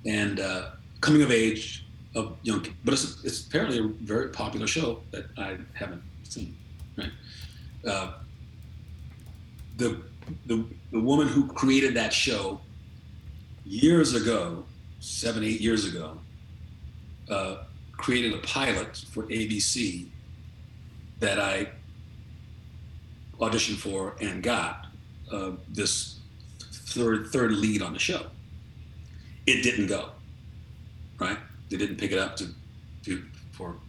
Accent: American